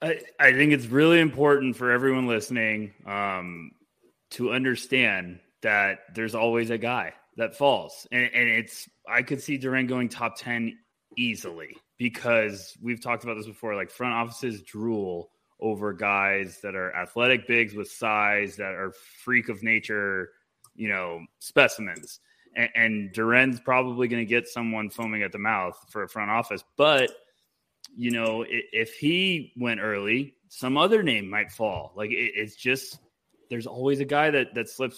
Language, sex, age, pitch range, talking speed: English, male, 20-39, 105-125 Hz, 160 wpm